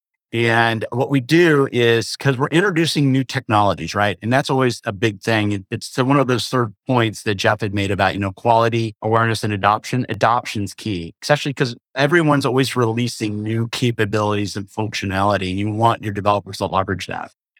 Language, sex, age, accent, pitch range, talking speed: English, male, 50-69, American, 105-130 Hz, 180 wpm